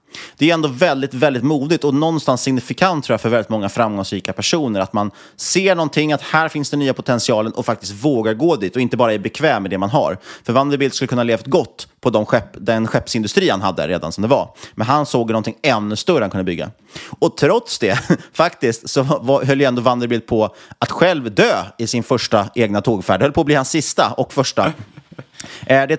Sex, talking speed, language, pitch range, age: male, 220 wpm, Swedish, 110-145 Hz, 30-49